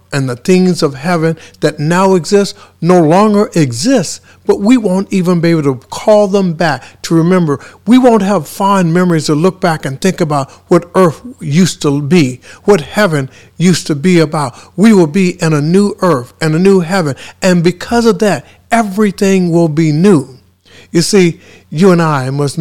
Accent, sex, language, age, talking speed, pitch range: American, male, English, 60-79, 185 wpm, 130-185 Hz